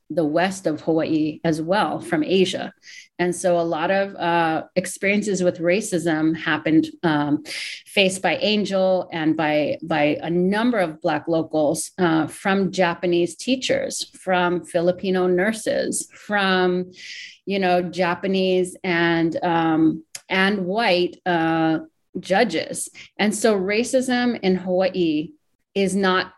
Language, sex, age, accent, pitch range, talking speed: English, female, 30-49, American, 160-185 Hz, 125 wpm